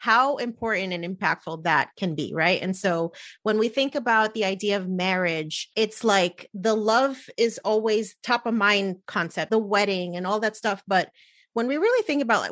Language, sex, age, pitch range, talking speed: English, female, 30-49, 185-225 Hz, 190 wpm